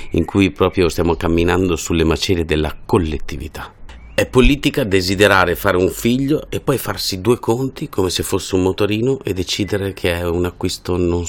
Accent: native